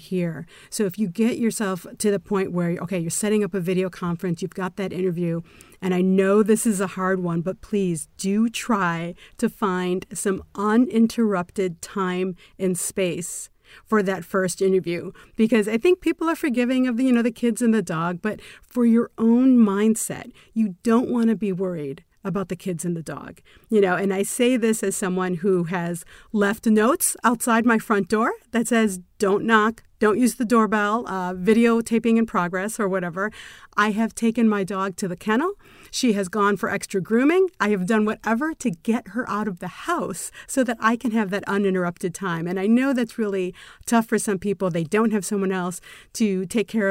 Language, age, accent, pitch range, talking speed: English, 40-59, American, 185-225 Hz, 200 wpm